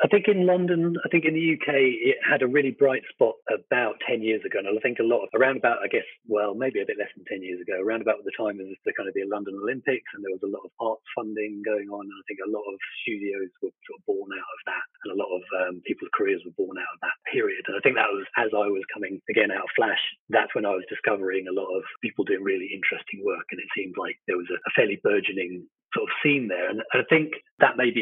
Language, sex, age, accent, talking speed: English, male, 30-49, British, 280 wpm